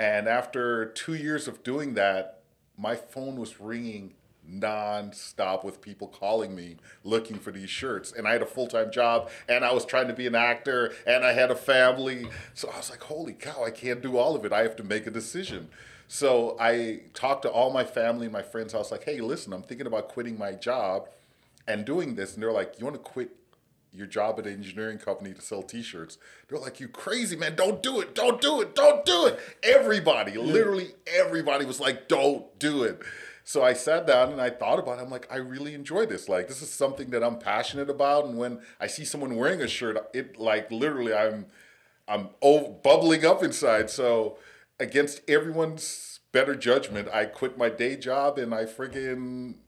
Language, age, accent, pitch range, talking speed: English, 40-59, American, 110-140 Hz, 210 wpm